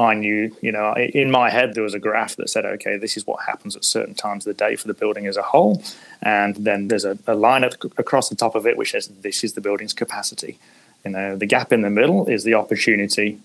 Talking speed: 260 wpm